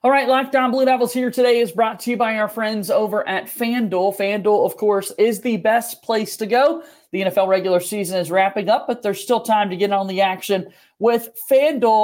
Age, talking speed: 40-59, 220 wpm